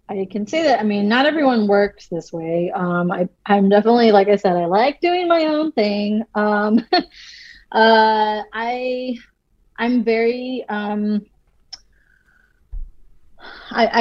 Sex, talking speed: female, 115 wpm